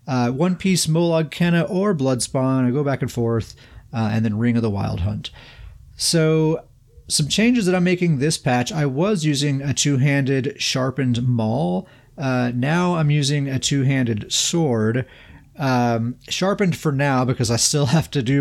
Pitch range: 115-150 Hz